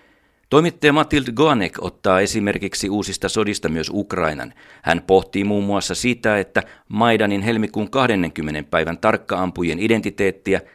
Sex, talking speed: male, 115 wpm